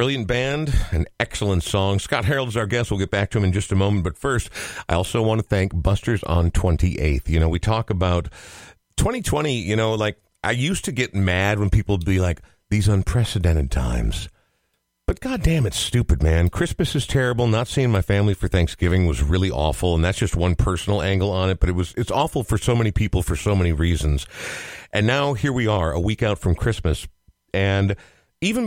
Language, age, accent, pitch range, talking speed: English, 50-69, American, 90-120 Hz, 210 wpm